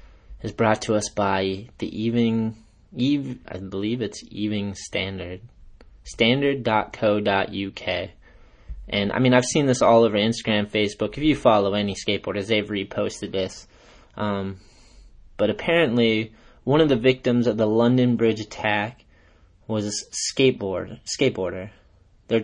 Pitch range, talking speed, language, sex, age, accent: 105-125 Hz, 130 wpm, English, male, 20-39, American